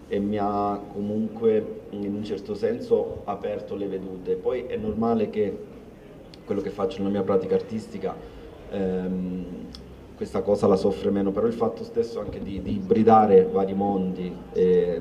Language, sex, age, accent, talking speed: Italian, male, 30-49, native, 155 wpm